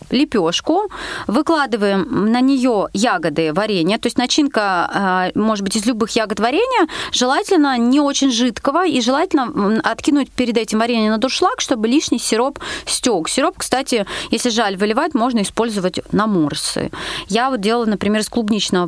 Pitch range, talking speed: 200-275 Hz, 145 wpm